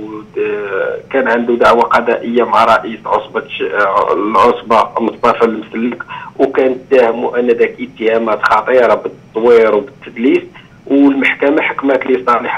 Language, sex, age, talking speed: Arabic, male, 50-69, 105 wpm